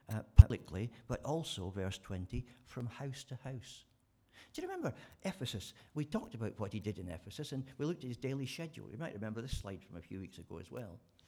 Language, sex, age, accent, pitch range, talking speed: English, male, 60-79, British, 115-155 Hz, 220 wpm